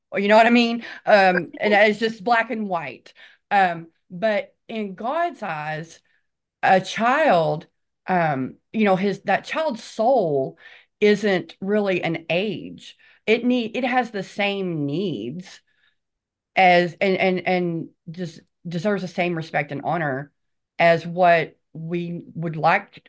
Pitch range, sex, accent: 165-205 Hz, female, American